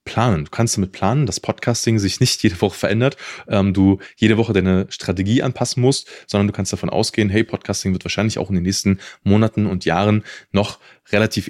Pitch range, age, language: 95-115 Hz, 20-39, German